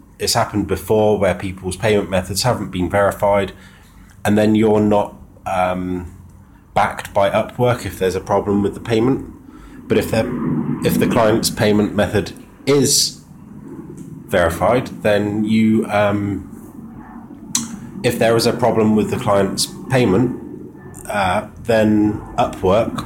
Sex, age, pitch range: male, 20-39, 100-115 Hz